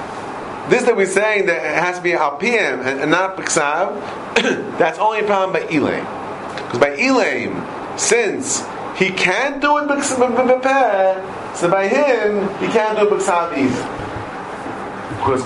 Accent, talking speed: American, 135 wpm